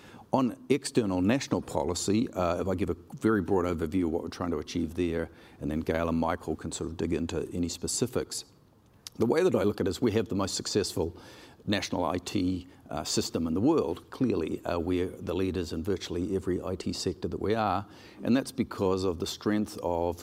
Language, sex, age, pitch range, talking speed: English, male, 50-69, 85-100 Hz, 210 wpm